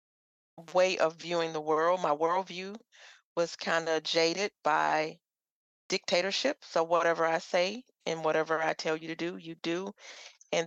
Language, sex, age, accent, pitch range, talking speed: English, female, 40-59, American, 150-170 Hz, 150 wpm